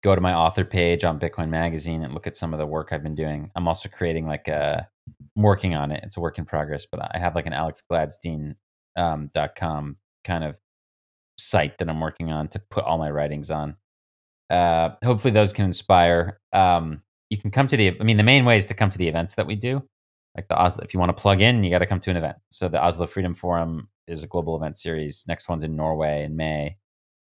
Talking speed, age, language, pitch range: 240 wpm, 30-49, English, 80-95 Hz